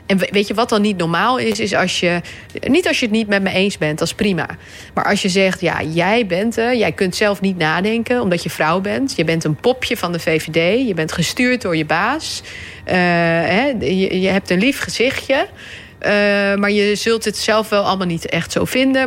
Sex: female